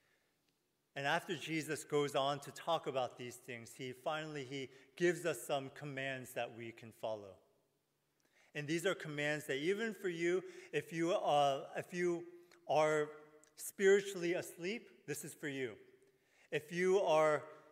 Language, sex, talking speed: English, male, 150 wpm